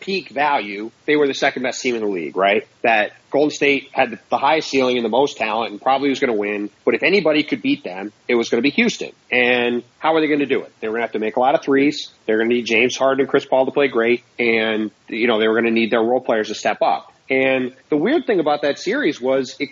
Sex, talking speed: male, 290 wpm